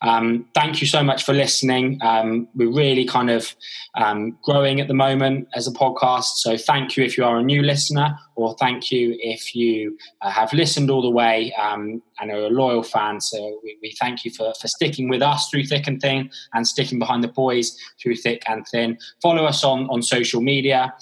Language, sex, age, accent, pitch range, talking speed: English, male, 20-39, British, 115-135 Hz, 215 wpm